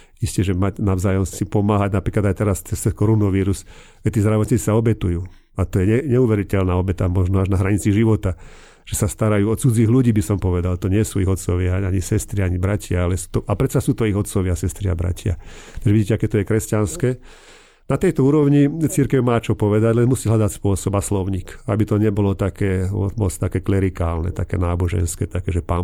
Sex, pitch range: male, 95-110 Hz